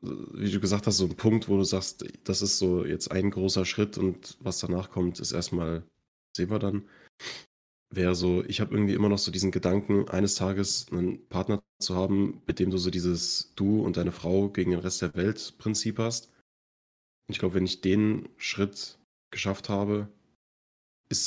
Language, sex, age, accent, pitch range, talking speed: German, male, 20-39, German, 90-100 Hz, 165 wpm